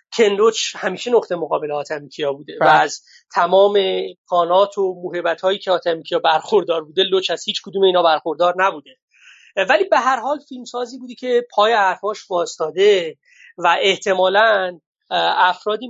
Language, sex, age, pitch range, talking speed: Persian, male, 30-49, 170-230 Hz, 135 wpm